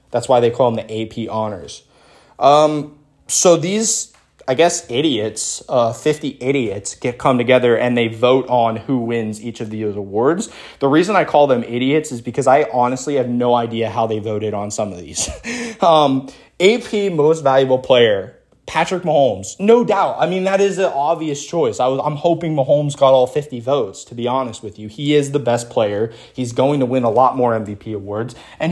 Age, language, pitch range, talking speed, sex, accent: 20-39, English, 120-150 Hz, 200 wpm, male, American